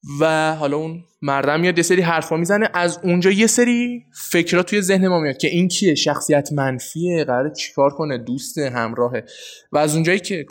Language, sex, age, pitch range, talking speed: Persian, male, 20-39, 140-195 Hz, 185 wpm